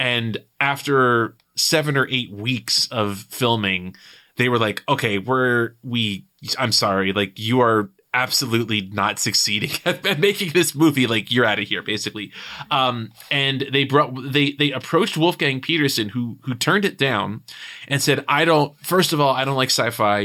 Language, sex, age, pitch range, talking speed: English, male, 20-39, 105-140 Hz, 170 wpm